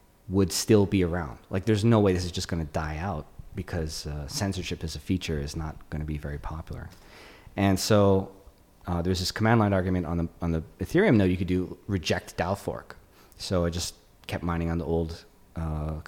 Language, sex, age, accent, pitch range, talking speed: English, male, 30-49, American, 85-100 Hz, 215 wpm